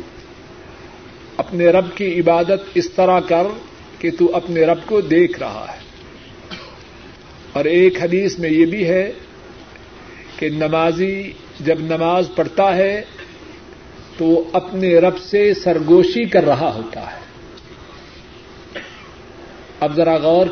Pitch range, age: 170-200 Hz, 50-69